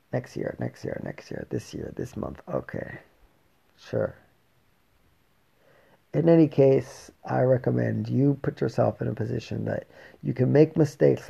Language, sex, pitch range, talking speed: English, male, 110-135 Hz, 150 wpm